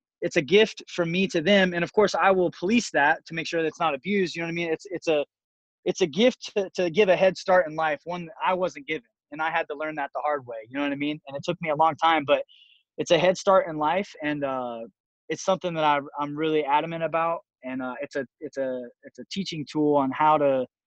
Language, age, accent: English, 20-39, American